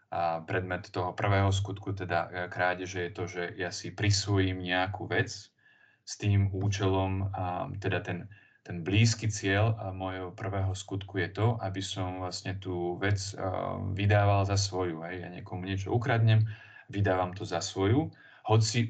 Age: 20-39